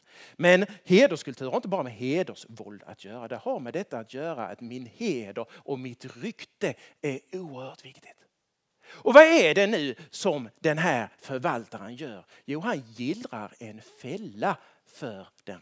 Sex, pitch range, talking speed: male, 170-275 Hz, 160 wpm